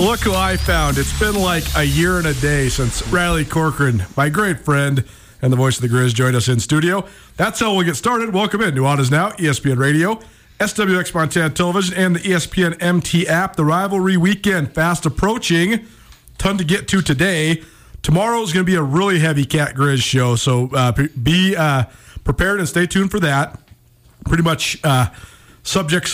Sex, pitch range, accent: male, 140-180 Hz, American